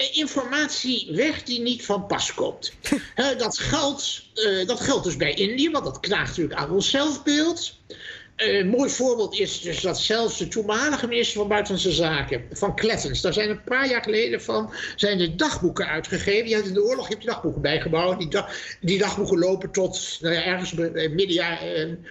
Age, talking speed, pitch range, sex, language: 60-79, 195 wpm, 180-255 Hz, male, Dutch